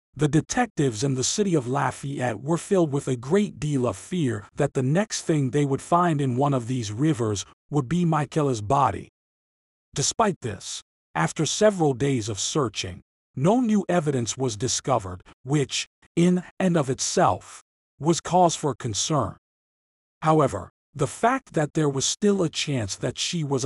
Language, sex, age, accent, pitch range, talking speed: English, male, 40-59, American, 125-165 Hz, 160 wpm